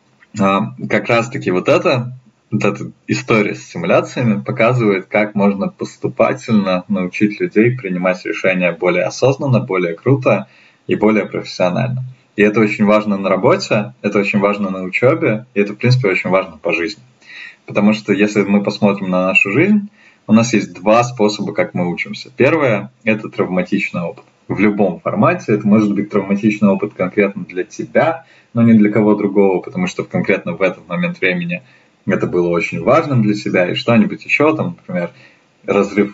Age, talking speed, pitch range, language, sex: 20-39, 165 wpm, 95-115 Hz, Russian, male